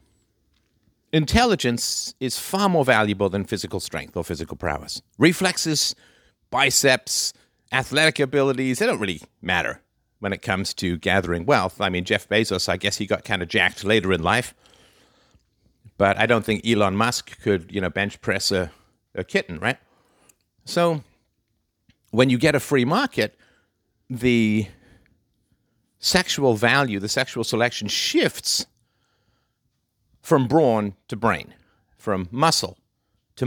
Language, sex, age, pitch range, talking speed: English, male, 50-69, 100-130 Hz, 135 wpm